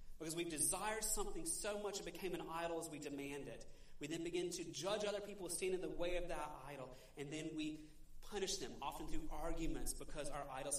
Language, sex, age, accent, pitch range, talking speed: English, male, 30-49, American, 140-185 Hz, 215 wpm